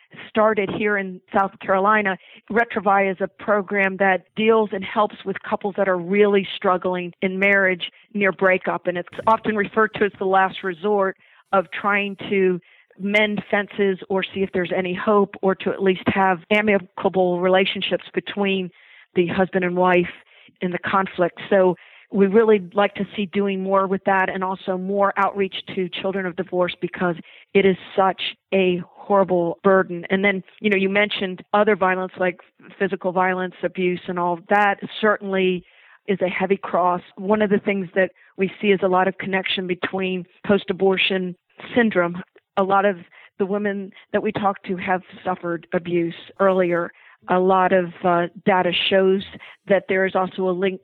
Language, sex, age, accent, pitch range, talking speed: English, female, 50-69, American, 185-200 Hz, 170 wpm